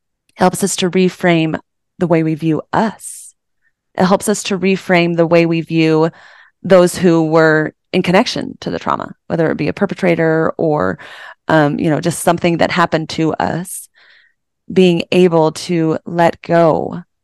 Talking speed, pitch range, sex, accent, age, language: 160 wpm, 160-190 Hz, female, American, 30-49, English